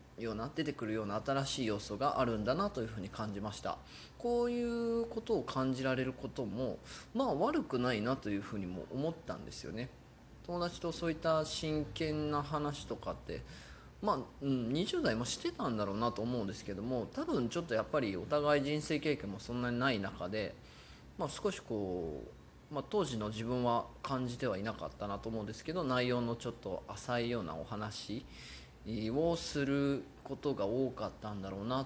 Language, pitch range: Japanese, 105-145 Hz